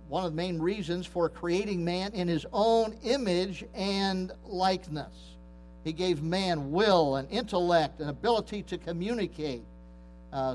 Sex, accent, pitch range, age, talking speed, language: male, American, 150-195 Hz, 50-69, 140 wpm, English